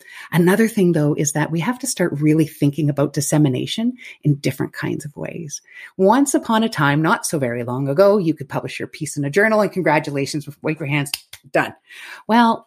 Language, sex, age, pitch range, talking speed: English, female, 30-49, 150-200 Hz, 200 wpm